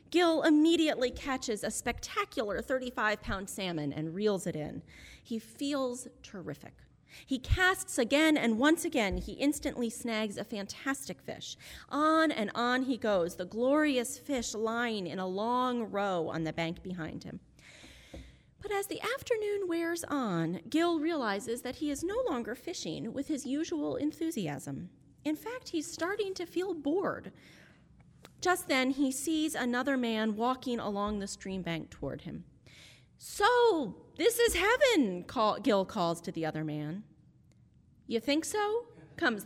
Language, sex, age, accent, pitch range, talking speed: English, female, 30-49, American, 195-315 Hz, 150 wpm